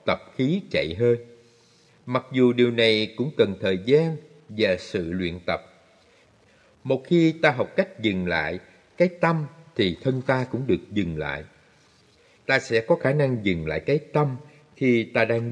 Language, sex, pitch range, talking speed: Vietnamese, male, 95-150 Hz, 170 wpm